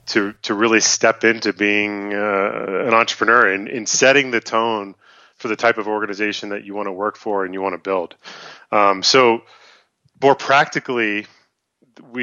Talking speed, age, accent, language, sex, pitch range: 170 wpm, 30-49, American, English, male, 100-120 Hz